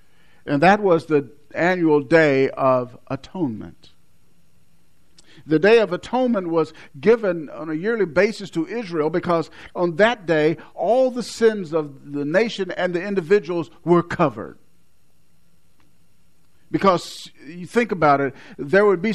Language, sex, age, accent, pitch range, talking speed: English, male, 50-69, American, 135-190 Hz, 135 wpm